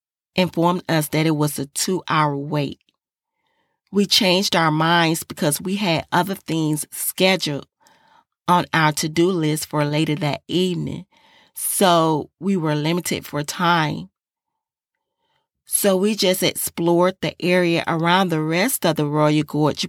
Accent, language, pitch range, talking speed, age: American, English, 155-185 Hz, 135 wpm, 30-49